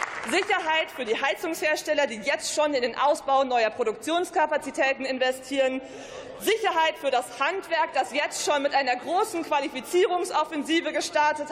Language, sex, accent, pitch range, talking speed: German, female, German, 255-315 Hz, 130 wpm